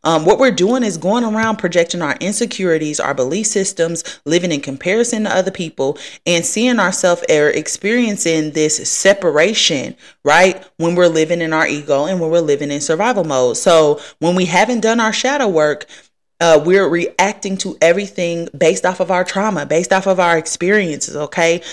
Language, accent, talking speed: English, American, 175 wpm